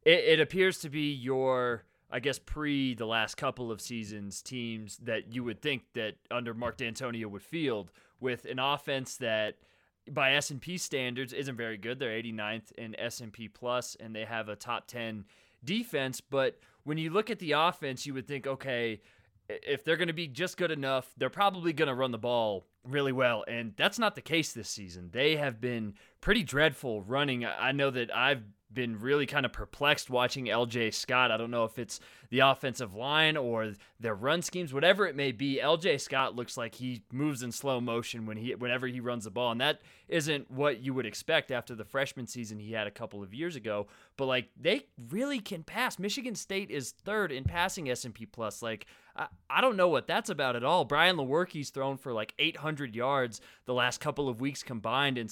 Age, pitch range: 20-39, 115-145 Hz